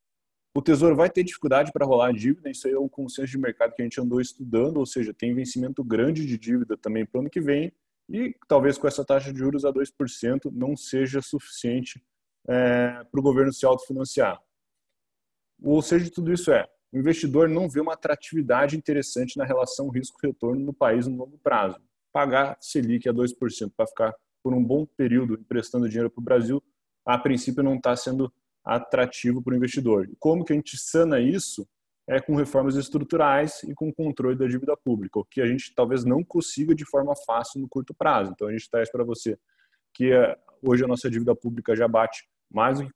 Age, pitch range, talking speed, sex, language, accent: 20-39, 125-145 Hz, 200 wpm, male, Portuguese, Brazilian